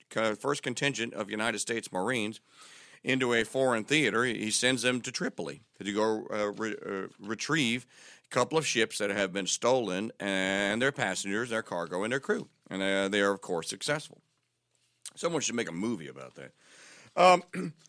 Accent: American